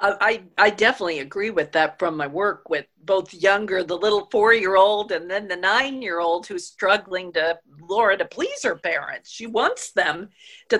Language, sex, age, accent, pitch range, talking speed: English, female, 50-69, American, 170-215 Hz, 170 wpm